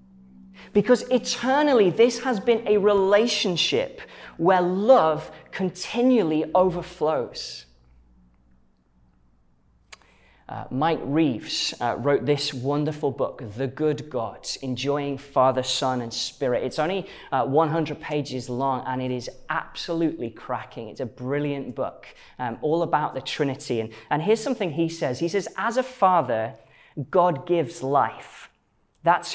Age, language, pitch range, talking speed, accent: 20-39, English, 125-190 Hz, 125 wpm, British